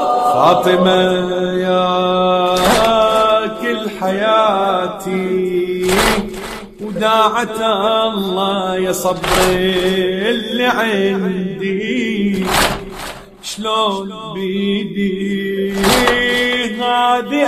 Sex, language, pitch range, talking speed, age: male, Arabic, 190-245 Hz, 45 wpm, 30-49